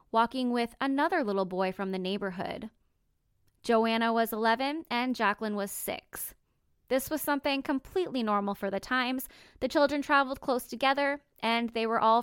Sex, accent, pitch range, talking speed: female, American, 215-260 Hz, 155 wpm